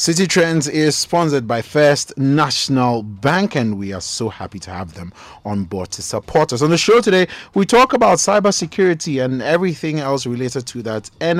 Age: 30-49